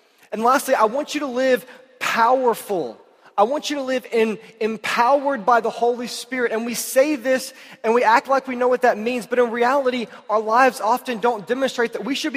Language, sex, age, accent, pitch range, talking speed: English, male, 20-39, American, 170-245 Hz, 210 wpm